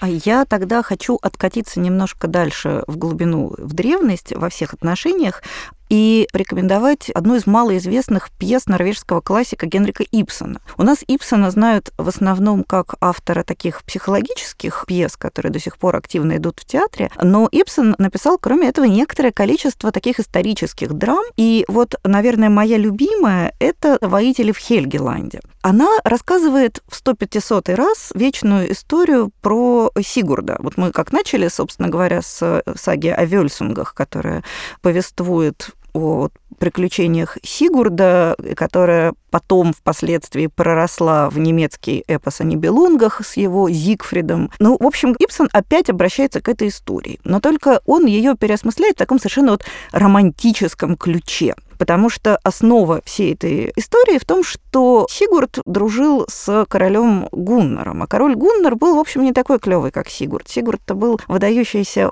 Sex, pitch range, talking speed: female, 180-260 Hz, 145 wpm